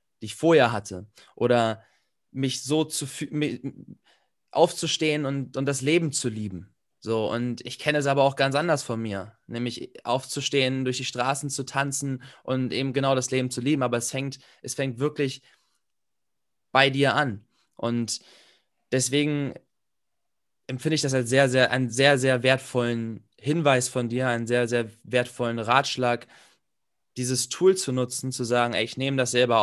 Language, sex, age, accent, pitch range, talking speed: German, male, 20-39, German, 120-140 Hz, 160 wpm